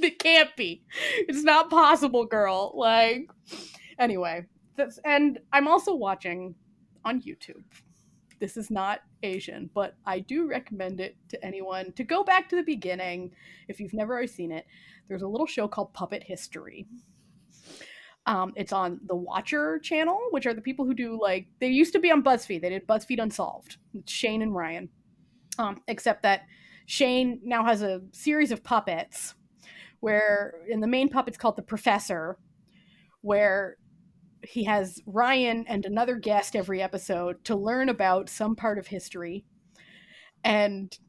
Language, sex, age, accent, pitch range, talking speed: English, female, 20-39, American, 195-260 Hz, 155 wpm